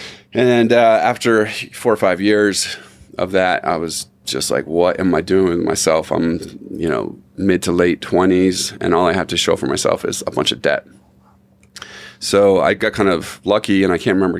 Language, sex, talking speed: English, male, 205 wpm